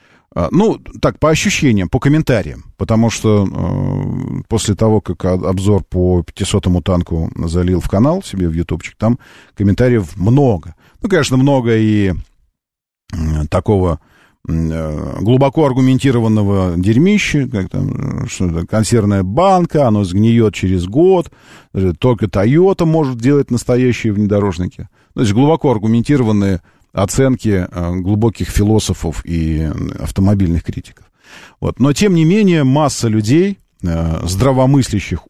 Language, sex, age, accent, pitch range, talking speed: Russian, male, 40-59, native, 90-130 Hz, 110 wpm